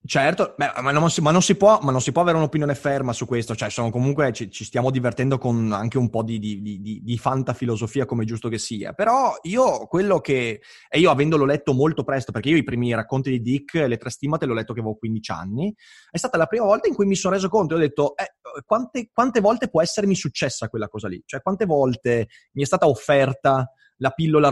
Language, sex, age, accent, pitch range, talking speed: Italian, male, 20-39, native, 120-155 Hz, 240 wpm